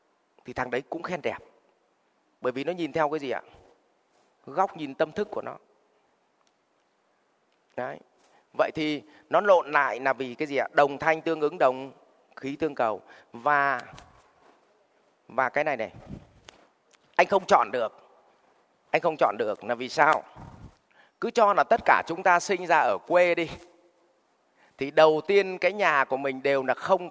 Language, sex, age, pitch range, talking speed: Vietnamese, male, 20-39, 140-205 Hz, 170 wpm